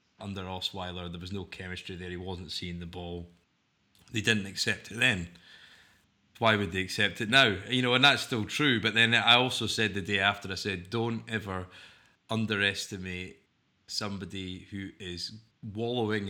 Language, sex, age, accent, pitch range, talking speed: English, male, 20-39, British, 90-105 Hz, 170 wpm